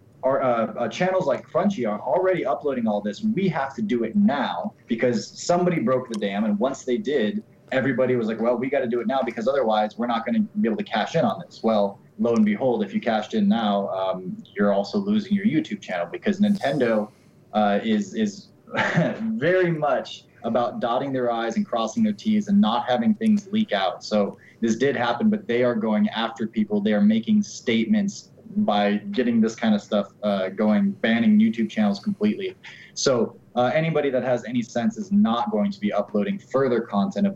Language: English